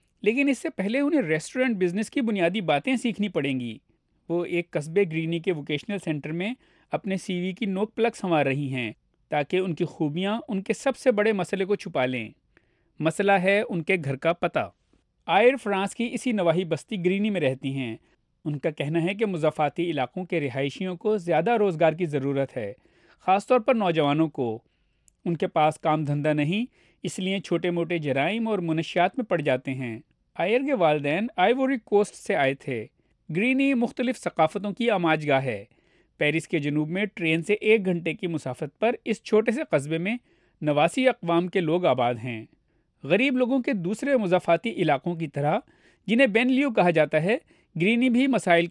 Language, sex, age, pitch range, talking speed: Urdu, male, 40-59, 155-220 Hz, 185 wpm